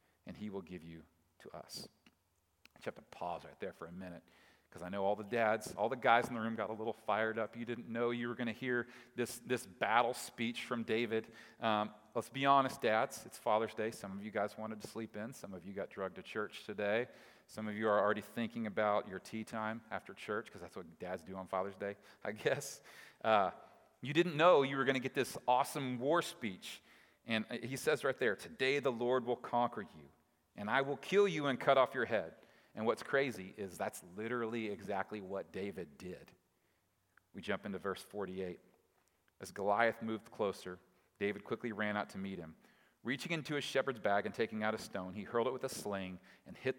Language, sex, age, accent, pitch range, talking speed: English, male, 40-59, American, 100-120 Hz, 220 wpm